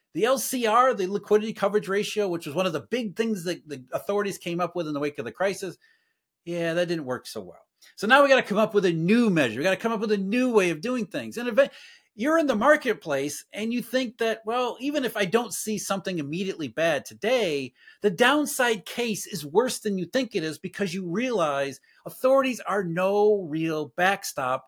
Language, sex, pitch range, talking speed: English, male, 165-230 Hz, 225 wpm